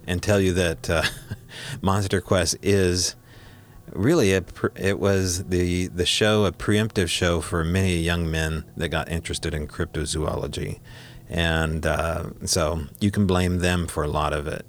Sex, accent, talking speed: male, American, 160 wpm